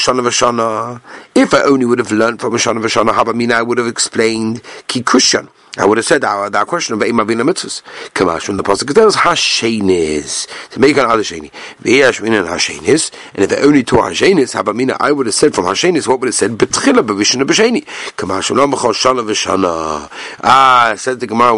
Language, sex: English, male